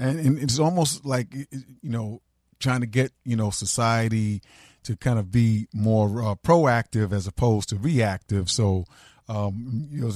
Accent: American